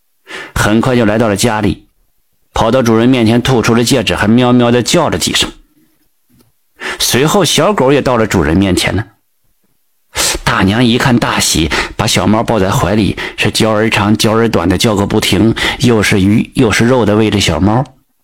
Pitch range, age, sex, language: 100-125 Hz, 50-69, male, Chinese